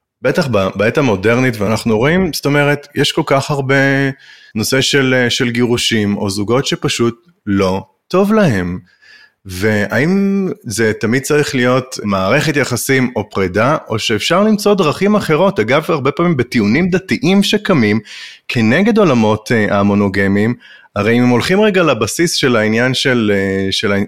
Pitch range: 110-175 Hz